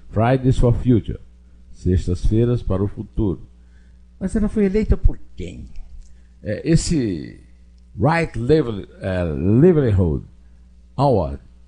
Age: 60-79